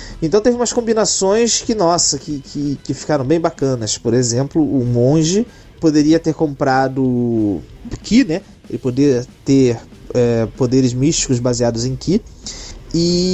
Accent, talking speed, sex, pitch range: Brazilian, 140 wpm, male, 125-170 Hz